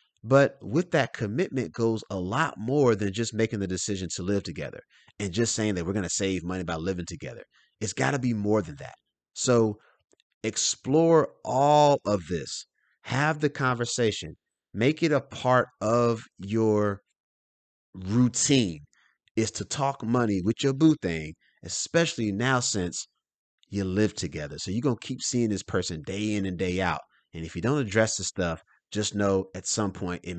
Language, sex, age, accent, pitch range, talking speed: English, male, 30-49, American, 95-125 Hz, 180 wpm